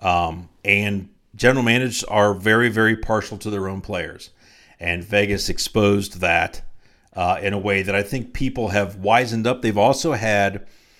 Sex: male